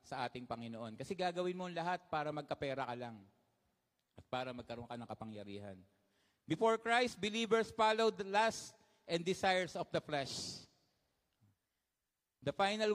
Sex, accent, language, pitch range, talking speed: male, native, Filipino, 160-220 Hz, 140 wpm